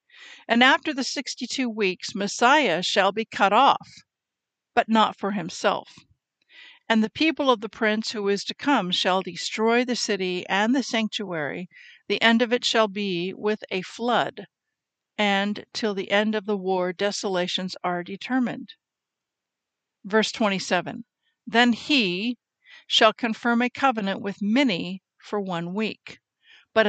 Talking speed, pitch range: 145 wpm, 195-245 Hz